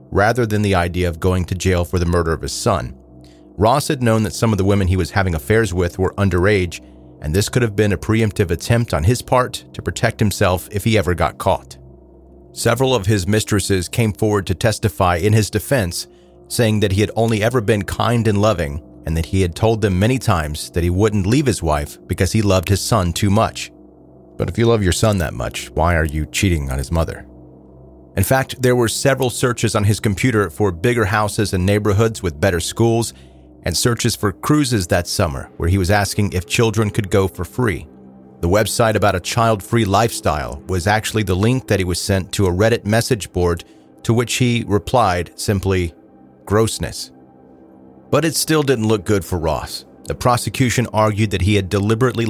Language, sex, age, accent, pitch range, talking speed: English, male, 40-59, American, 85-110 Hz, 205 wpm